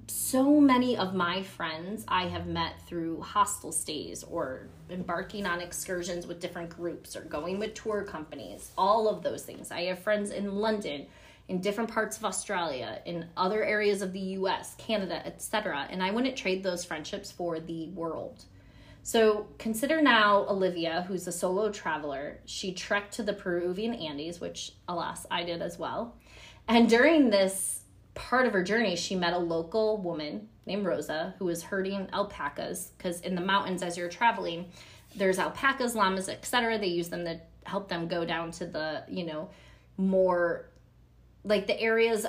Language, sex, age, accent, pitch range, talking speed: English, female, 20-39, American, 170-210 Hz, 170 wpm